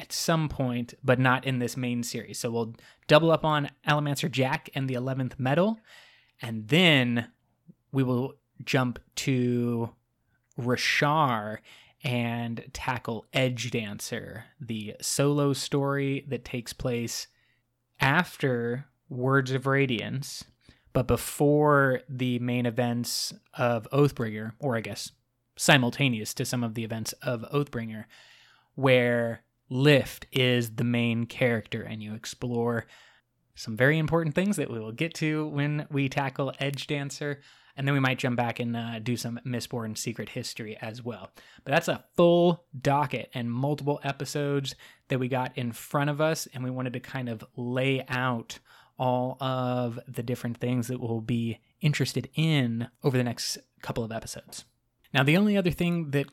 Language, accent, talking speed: English, American, 150 wpm